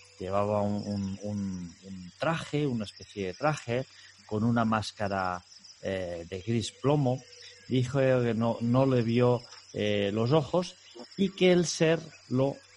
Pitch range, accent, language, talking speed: 105-140 Hz, Spanish, Spanish, 145 wpm